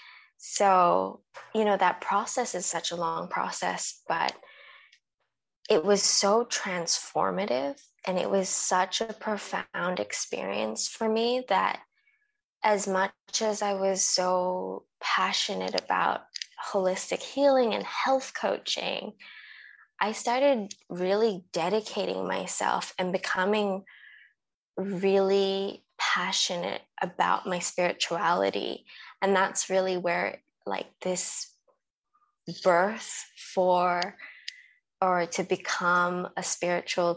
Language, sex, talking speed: English, female, 100 wpm